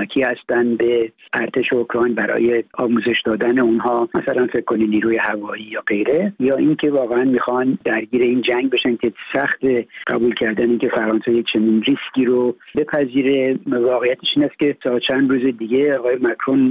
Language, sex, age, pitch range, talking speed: Persian, male, 60-79, 115-135 Hz, 160 wpm